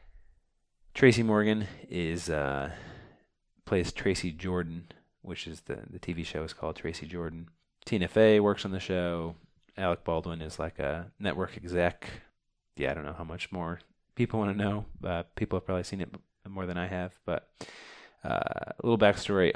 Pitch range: 85-100 Hz